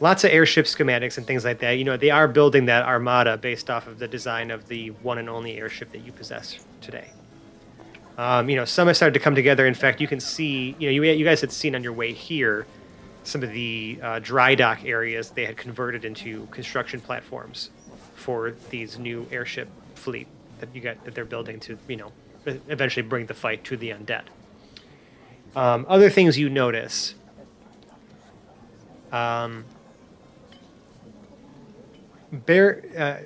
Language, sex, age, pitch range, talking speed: English, male, 30-49, 120-150 Hz, 170 wpm